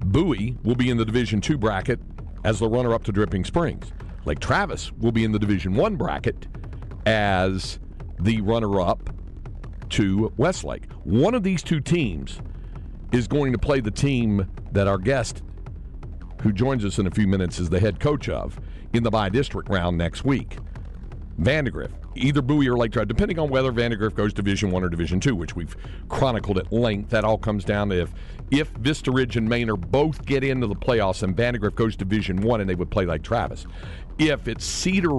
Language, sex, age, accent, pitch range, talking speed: English, male, 50-69, American, 95-125 Hz, 190 wpm